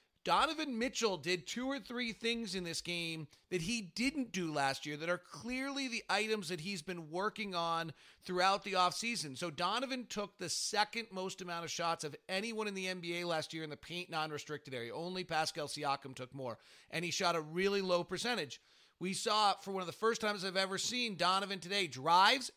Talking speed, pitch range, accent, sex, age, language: 200 wpm, 175-210 Hz, American, male, 30-49, English